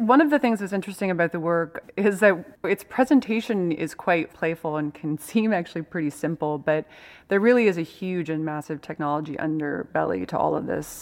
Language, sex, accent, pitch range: English, female, American, 150-175 Hz